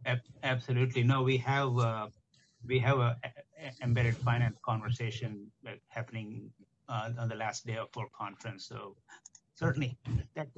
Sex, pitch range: male, 120-130 Hz